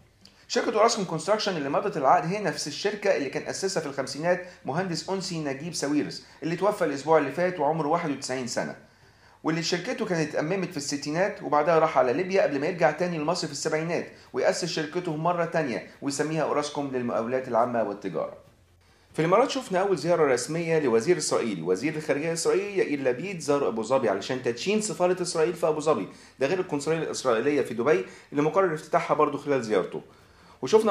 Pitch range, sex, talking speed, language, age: 145-185 Hz, male, 170 wpm, Arabic, 40-59